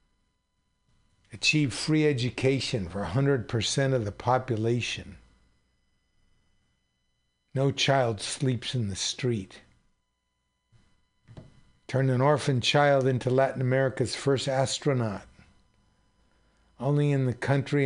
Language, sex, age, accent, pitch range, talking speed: English, male, 60-79, American, 100-130 Hz, 90 wpm